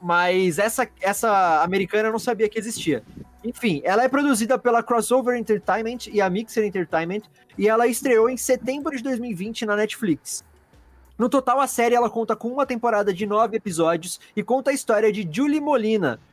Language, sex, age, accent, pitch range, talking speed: Portuguese, male, 20-39, Brazilian, 180-240 Hz, 175 wpm